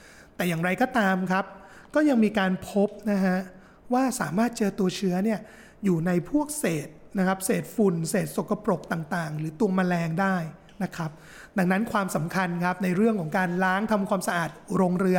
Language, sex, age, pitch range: Thai, male, 20-39, 175-210 Hz